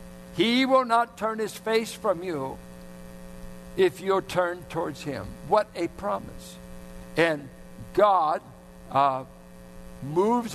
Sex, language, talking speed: male, English, 115 wpm